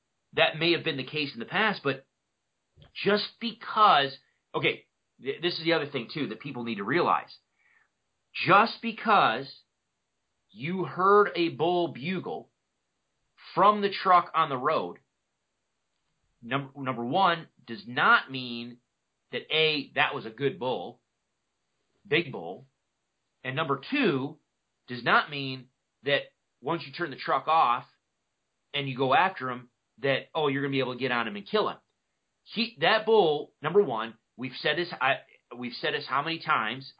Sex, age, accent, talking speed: male, 40-59, American, 160 wpm